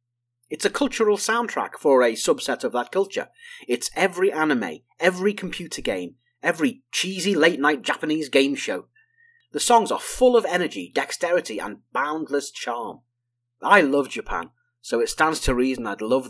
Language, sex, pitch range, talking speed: English, male, 120-185 Hz, 155 wpm